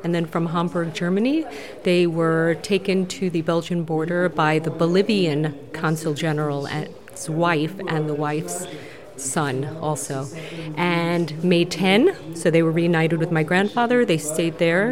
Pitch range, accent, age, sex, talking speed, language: 160-195 Hz, American, 30-49, female, 145 wpm, French